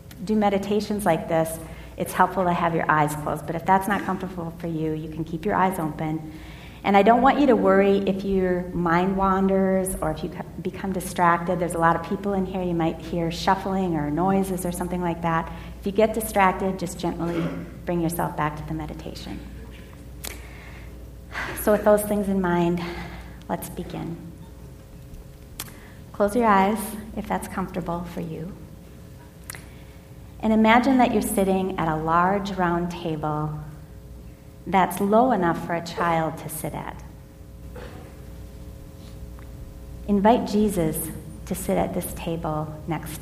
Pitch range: 160-195 Hz